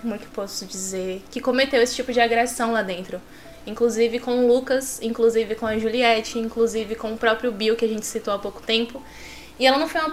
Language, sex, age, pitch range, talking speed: Portuguese, female, 10-29, 220-260 Hz, 225 wpm